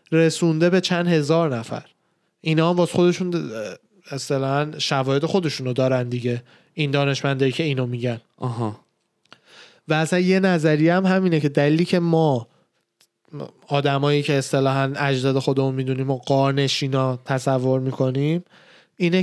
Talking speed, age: 125 wpm, 20-39